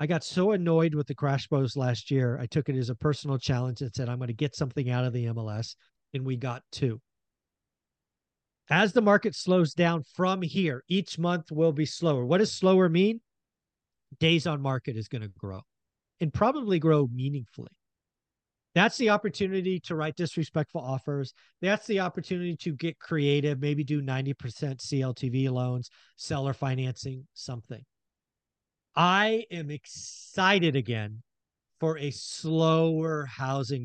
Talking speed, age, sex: 155 wpm, 40-59, male